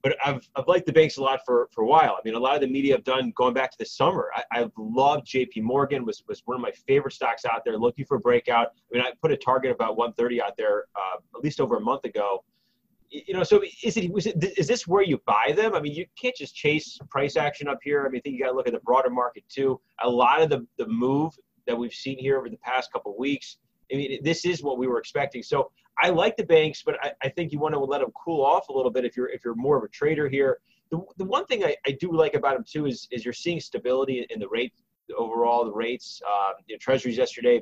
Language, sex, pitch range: English, male, 125-165 Hz